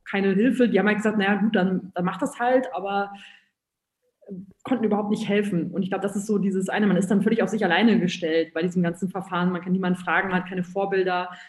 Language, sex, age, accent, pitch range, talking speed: English, female, 20-39, German, 180-210 Hz, 240 wpm